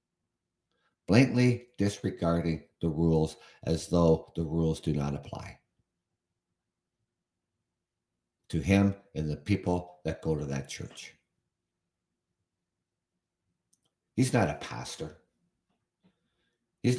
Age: 60-79